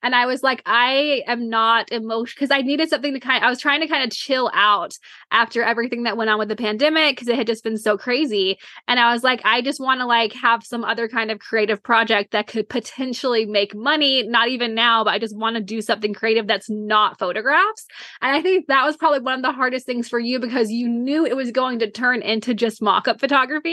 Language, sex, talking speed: English, female, 250 wpm